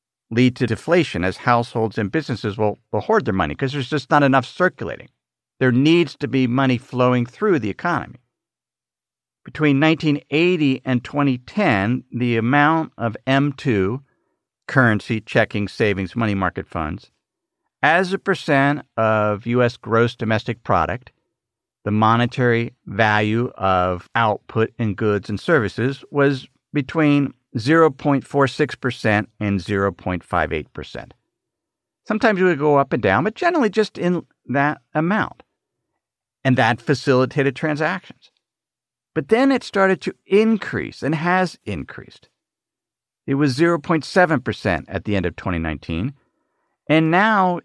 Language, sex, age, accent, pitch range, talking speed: English, male, 50-69, American, 110-150 Hz, 125 wpm